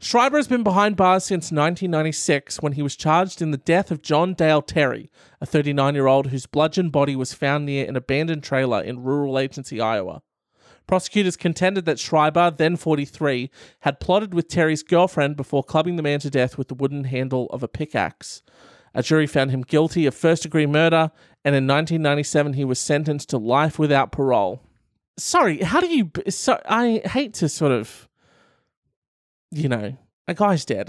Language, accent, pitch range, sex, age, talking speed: English, Australian, 145-190 Hz, male, 30-49, 175 wpm